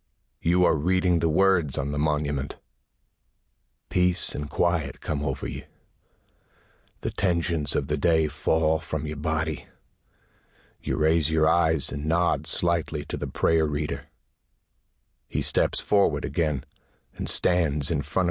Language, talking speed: English, 140 wpm